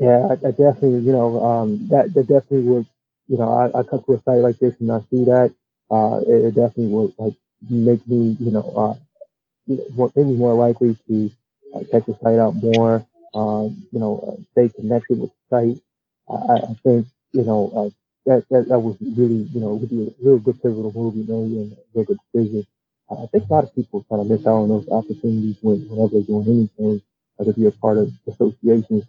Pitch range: 110-130 Hz